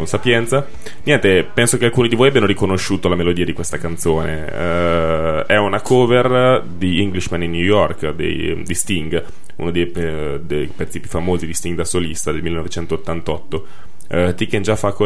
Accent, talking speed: native, 155 wpm